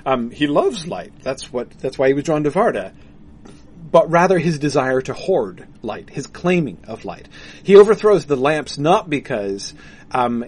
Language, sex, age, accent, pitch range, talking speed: English, male, 40-59, American, 120-155 Hz, 170 wpm